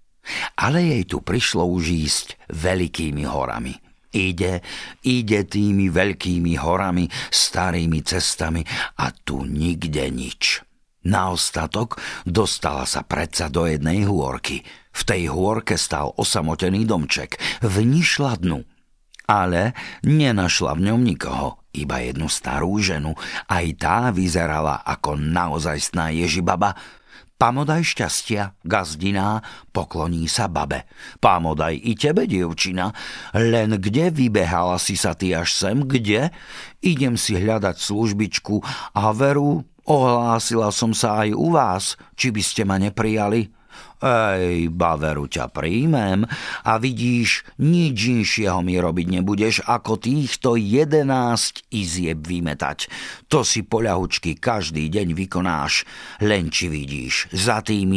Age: 50-69